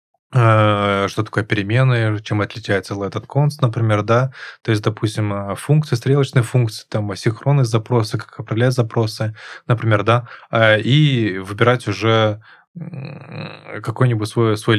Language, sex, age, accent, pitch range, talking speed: Russian, male, 20-39, native, 110-130 Hz, 120 wpm